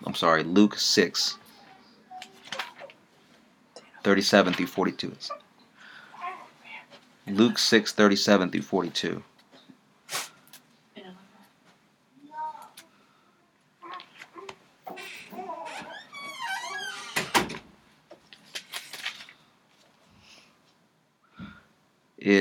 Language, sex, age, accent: English, male, 30-49, American